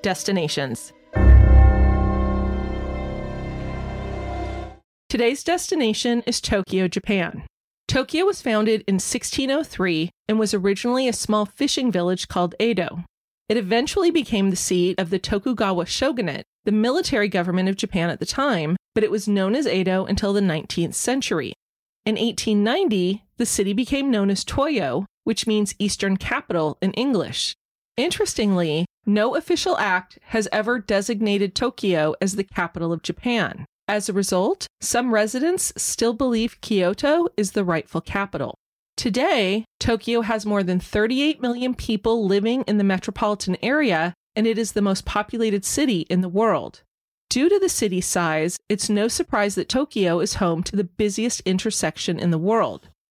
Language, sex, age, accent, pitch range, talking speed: English, female, 30-49, American, 180-235 Hz, 145 wpm